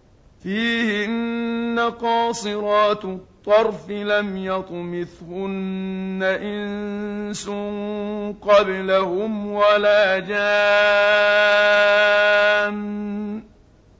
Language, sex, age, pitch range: Arabic, male, 50-69, 190-220 Hz